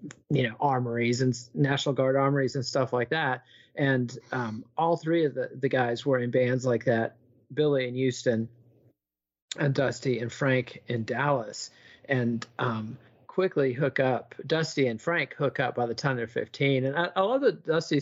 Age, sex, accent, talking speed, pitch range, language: 40-59, male, American, 180 wpm, 125-155 Hz, English